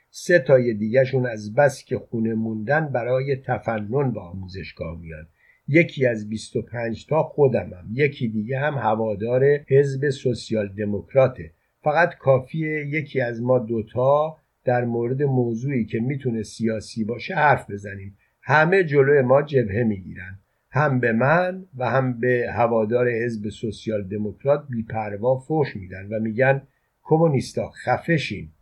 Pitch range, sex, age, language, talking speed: 110-135 Hz, male, 50-69, Persian, 130 wpm